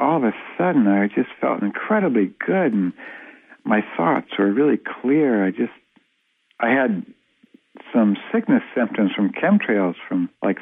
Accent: American